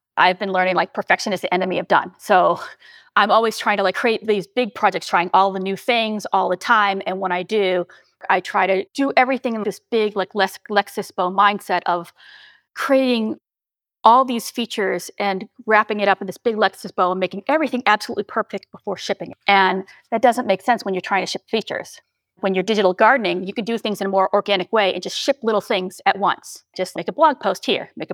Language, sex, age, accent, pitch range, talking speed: English, female, 30-49, American, 185-230 Hz, 220 wpm